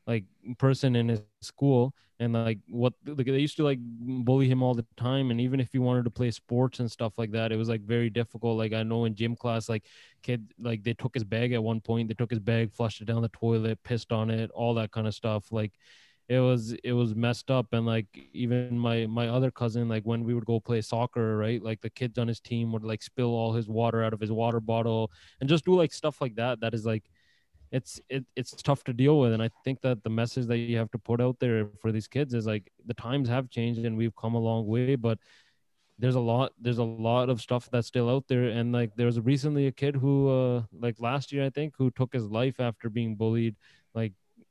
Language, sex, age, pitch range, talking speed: English, male, 20-39, 115-125 Hz, 250 wpm